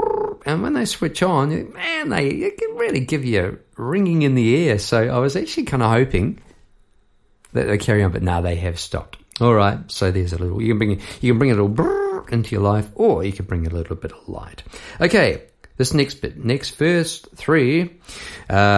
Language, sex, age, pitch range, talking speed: English, male, 50-69, 100-155 Hz, 210 wpm